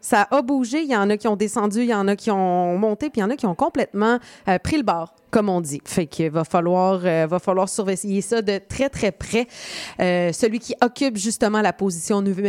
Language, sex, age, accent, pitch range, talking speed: French, female, 30-49, Canadian, 185-245 Hz, 255 wpm